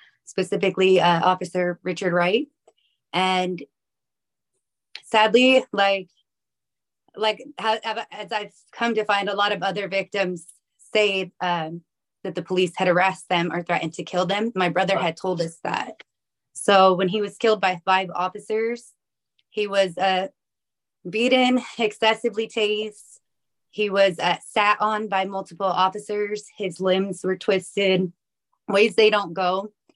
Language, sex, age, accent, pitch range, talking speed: English, female, 20-39, American, 185-215 Hz, 135 wpm